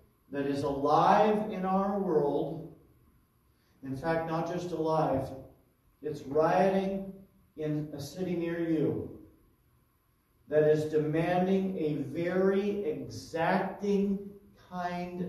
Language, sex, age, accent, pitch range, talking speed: English, male, 40-59, American, 150-200 Hz, 100 wpm